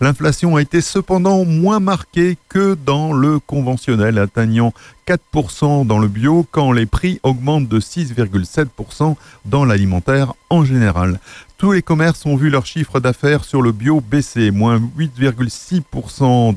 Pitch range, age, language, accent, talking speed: 110-150 Hz, 50-69, French, French, 140 wpm